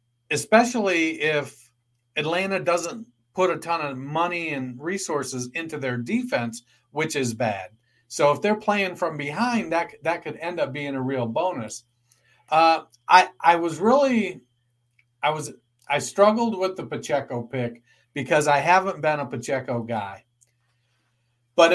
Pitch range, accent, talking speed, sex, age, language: 125-165 Hz, American, 145 wpm, male, 40-59, English